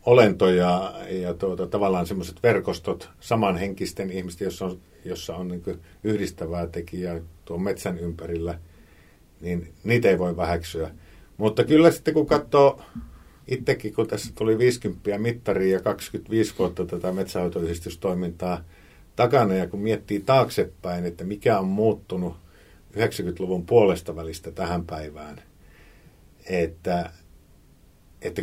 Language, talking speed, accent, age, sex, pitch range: Finnish, 115 wpm, native, 50-69, male, 85-105 Hz